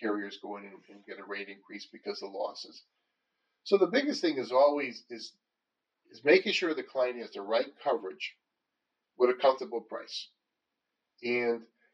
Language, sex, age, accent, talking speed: English, male, 40-59, American, 160 wpm